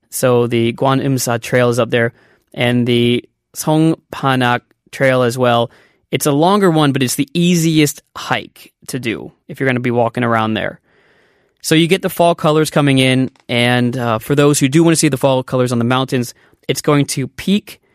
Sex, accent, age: male, American, 20-39